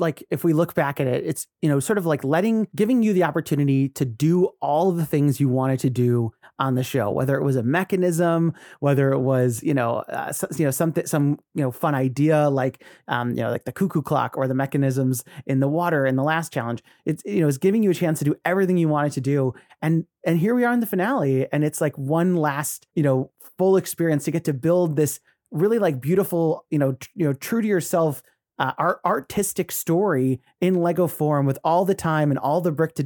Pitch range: 140-180 Hz